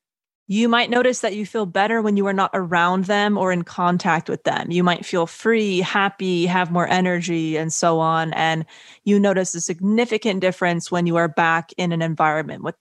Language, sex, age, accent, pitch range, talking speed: English, female, 20-39, American, 170-205 Hz, 200 wpm